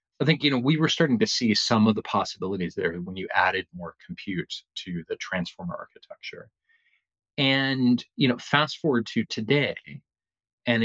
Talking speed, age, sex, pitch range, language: 170 wpm, 40-59, male, 95-130 Hz, English